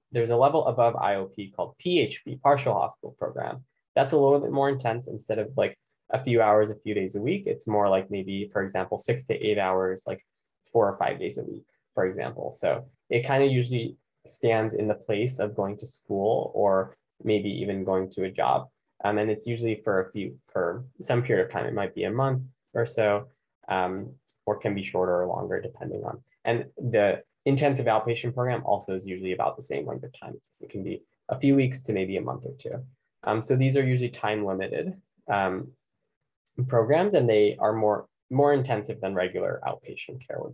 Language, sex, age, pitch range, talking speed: English, male, 10-29, 100-130 Hz, 205 wpm